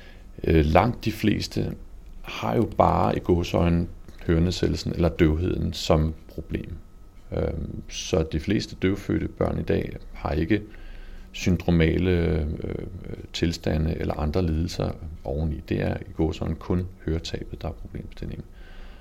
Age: 40-59